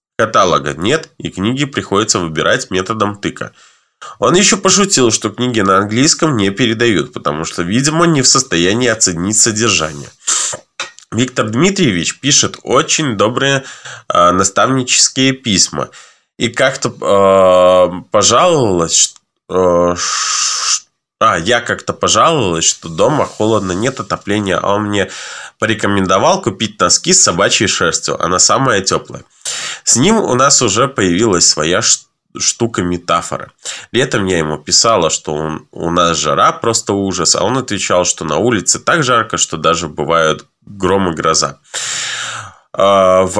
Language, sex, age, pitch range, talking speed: Russian, male, 20-39, 90-125 Hz, 130 wpm